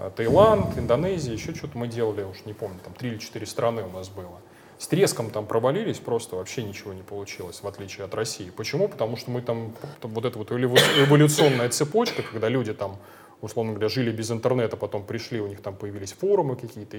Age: 20-39